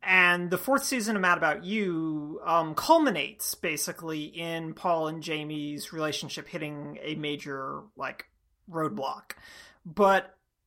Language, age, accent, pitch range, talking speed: English, 30-49, American, 160-205 Hz, 125 wpm